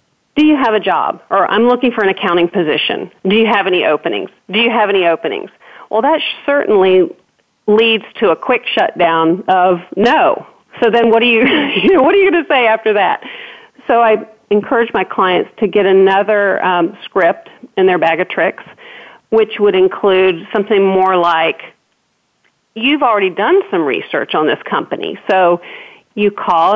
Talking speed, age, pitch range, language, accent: 175 wpm, 40-59, 185-235 Hz, English, American